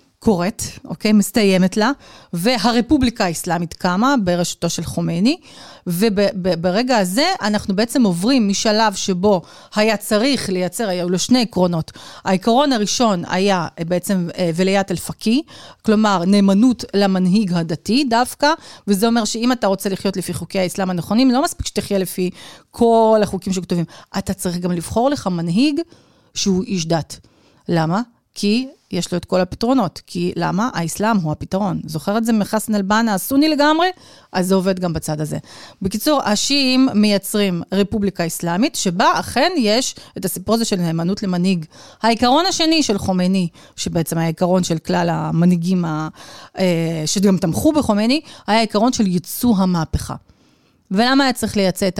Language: Hebrew